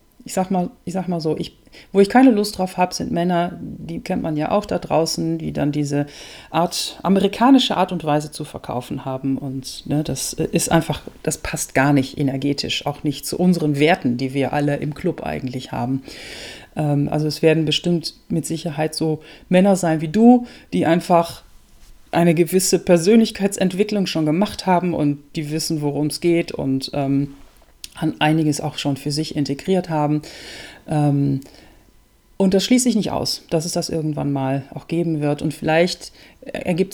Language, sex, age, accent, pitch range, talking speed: German, female, 40-59, German, 150-180 Hz, 175 wpm